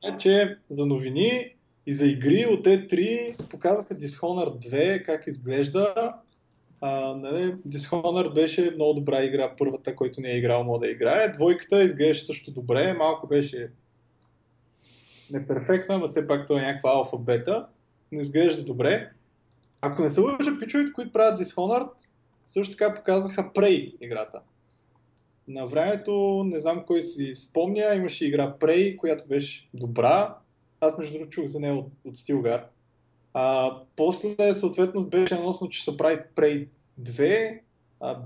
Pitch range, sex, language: 135-190 Hz, male, Bulgarian